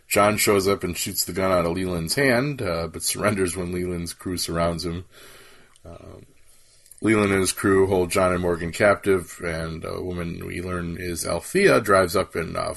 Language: English